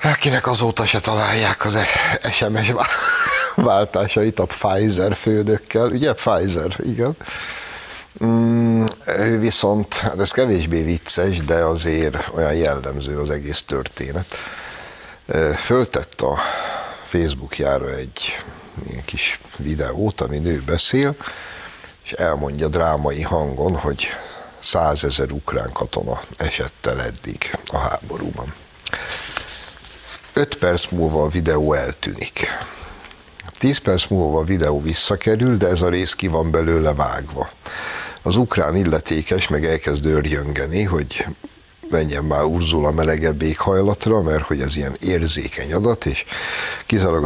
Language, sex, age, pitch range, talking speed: Hungarian, male, 60-79, 75-105 Hz, 115 wpm